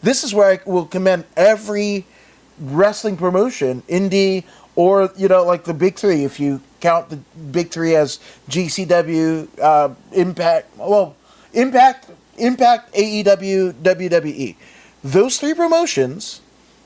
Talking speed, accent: 125 wpm, American